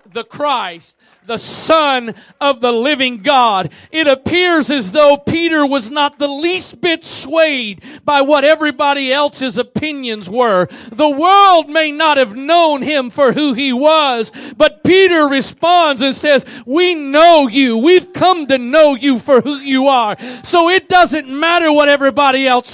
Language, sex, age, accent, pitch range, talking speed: English, male, 40-59, American, 245-310 Hz, 160 wpm